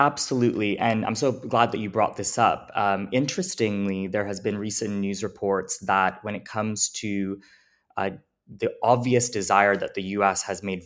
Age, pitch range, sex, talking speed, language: 20-39, 95-110 Hz, male, 175 wpm, English